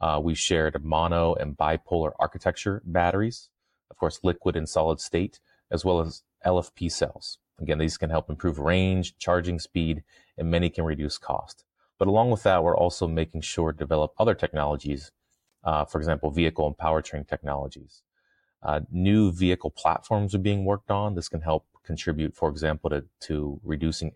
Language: English